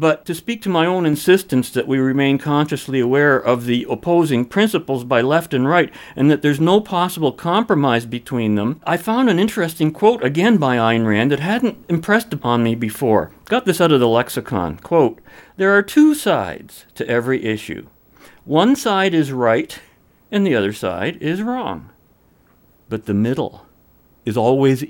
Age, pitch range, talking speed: 50-69, 125-180 Hz, 175 wpm